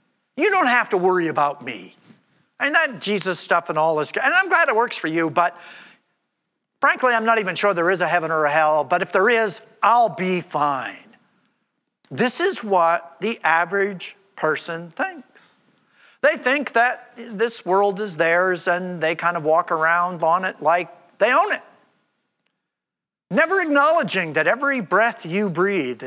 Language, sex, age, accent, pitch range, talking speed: English, male, 50-69, American, 175-245 Hz, 170 wpm